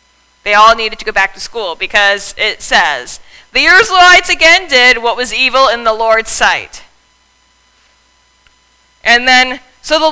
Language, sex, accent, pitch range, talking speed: English, female, American, 200-275 Hz, 155 wpm